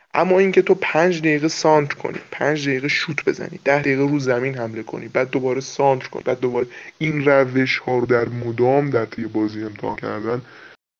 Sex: male